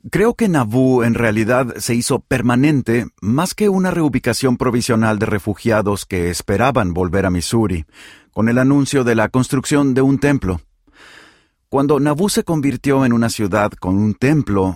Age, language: 40-59, Spanish